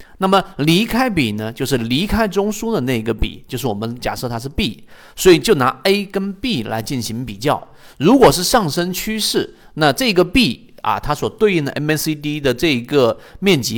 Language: Chinese